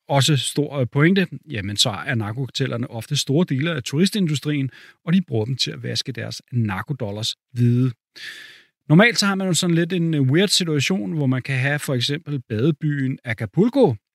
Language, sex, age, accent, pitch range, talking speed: Danish, male, 30-49, native, 125-170 Hz, 170 wpm